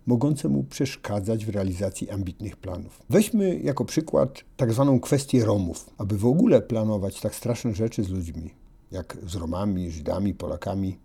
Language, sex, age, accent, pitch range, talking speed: Polish, male, 50-69, native, 100-130 Hz, 150 wpm